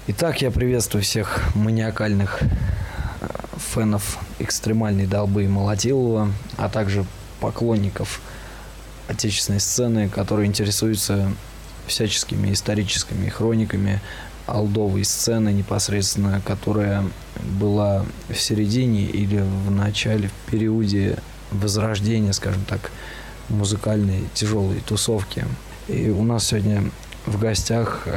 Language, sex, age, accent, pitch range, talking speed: Russian, male, 20-39, native, 100-110 Hz, 95 wpm